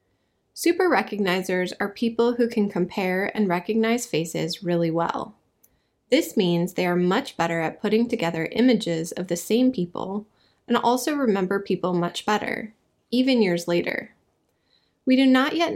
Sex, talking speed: female, 145 wpm